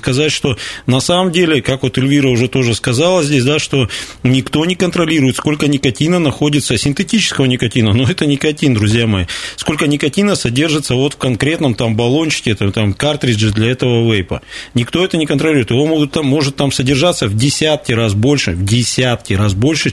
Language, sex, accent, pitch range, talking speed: Russian, male, native, 115-150 Hz, 180 wpm